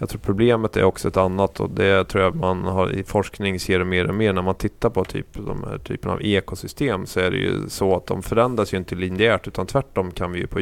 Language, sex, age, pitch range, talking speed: Swedish, male, 30-49, 95-115 Hz, 260 wpm